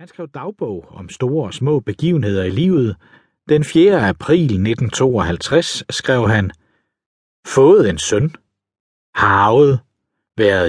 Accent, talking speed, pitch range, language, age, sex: native, 125 wpm, 100-140 Hz, Danish, 60-79, male